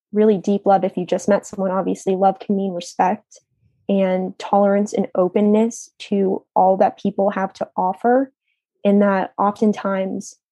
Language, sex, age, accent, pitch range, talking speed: English, female, 10-29, American, 190-220 Hz, 155 wpm